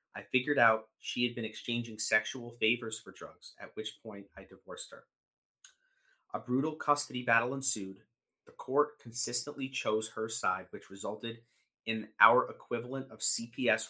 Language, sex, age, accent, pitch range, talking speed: English, male, 30-49, American, 105-120 Hz, 150 wpm